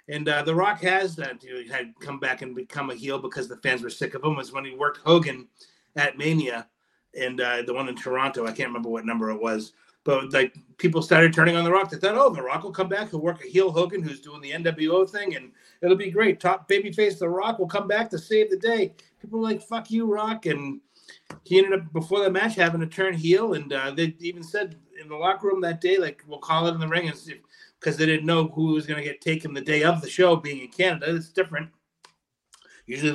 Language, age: English, 30-49